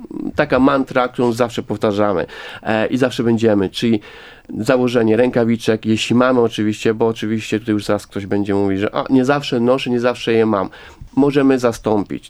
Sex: male